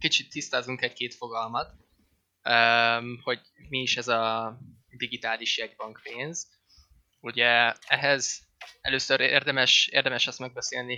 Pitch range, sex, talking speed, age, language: 110-130 Hz, male, 105 wpm, 20-39, Hungarian